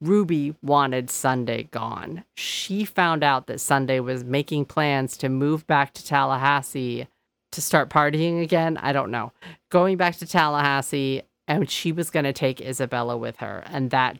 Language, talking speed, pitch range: English, 165 wpm, 125-155 Hz